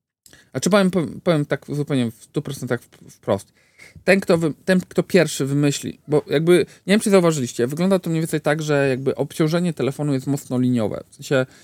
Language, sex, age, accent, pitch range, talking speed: Polish, male, 40-59, native, 125-165 Hz, 185 wpm